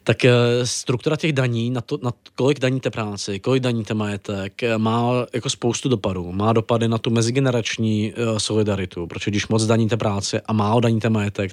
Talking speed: 165 wpm